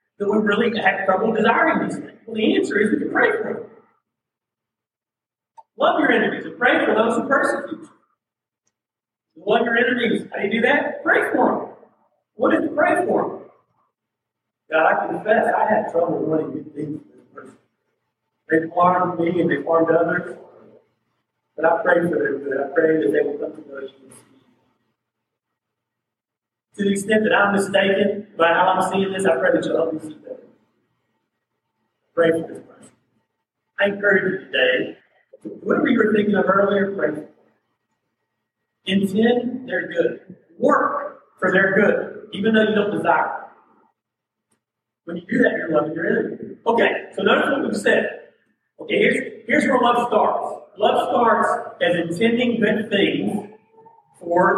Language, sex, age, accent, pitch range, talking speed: English, male, 50-69, American, 165-230 Hz, 165 wpm